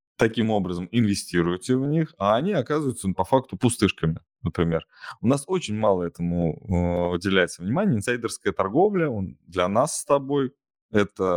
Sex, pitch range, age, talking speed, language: male, 90-130 Hz, 20-39, 150 wpm, Russian